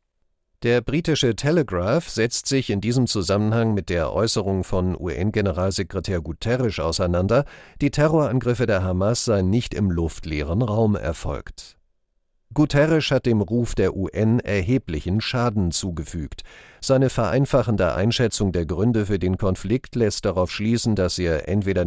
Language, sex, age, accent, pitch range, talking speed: German, male, 40-59, German, 90-120 Hz, 130 wpm